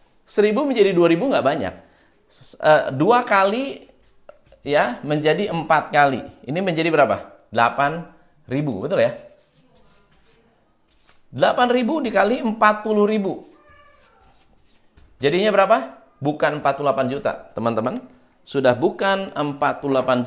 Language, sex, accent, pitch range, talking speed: Indonesian, male, native, 145-205 Hz, 90 wpm